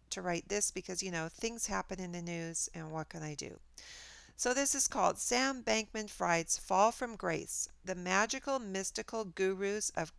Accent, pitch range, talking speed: American, 175-225 Hz, 185 wpm